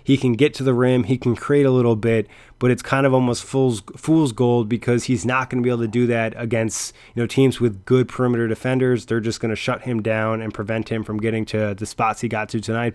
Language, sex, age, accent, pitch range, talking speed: English, male, 20-39, American, 115-135 Hz, 265 wpm